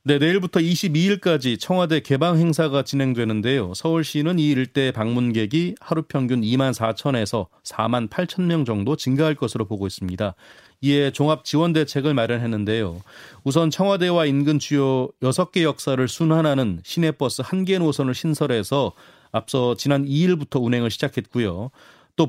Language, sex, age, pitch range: Korean, male, 30-49, 120-160 Hz